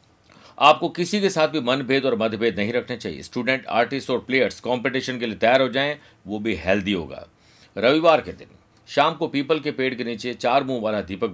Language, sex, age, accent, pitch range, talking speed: Hindi, male, 50-69, native, 110-145 Hz, 205 wpm